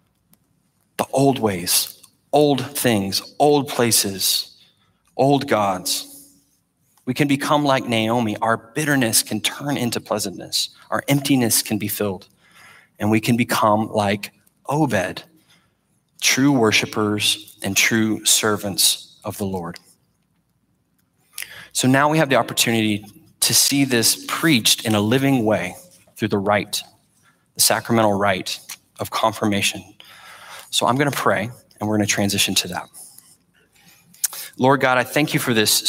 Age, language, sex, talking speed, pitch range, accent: 30-49, English, male, 130 wpm, 105-130 Hz, American